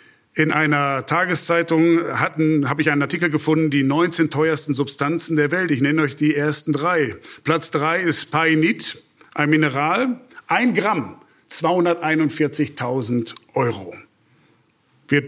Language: German